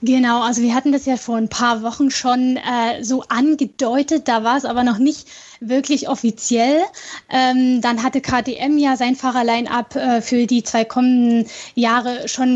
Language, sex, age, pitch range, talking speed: German, female, 10-29, 235-270 Hz, 165 wpm